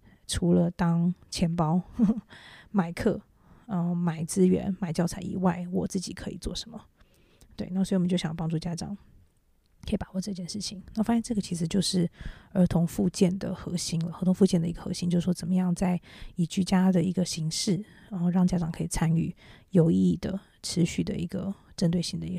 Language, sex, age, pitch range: English, female, 20-39, 170-190 Hz